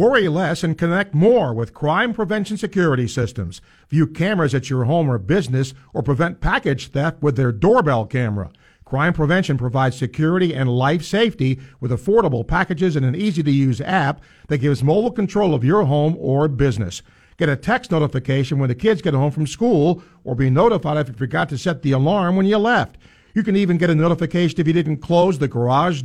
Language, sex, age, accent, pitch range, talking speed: English, male, 50-69, American, 135-185 Hz, 195 wpm